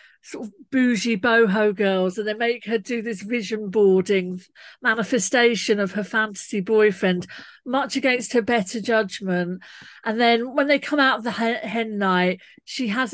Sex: female